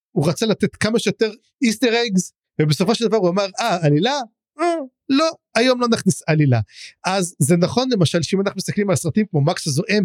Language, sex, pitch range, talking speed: English, male, 150-215 Hz, 185 wpm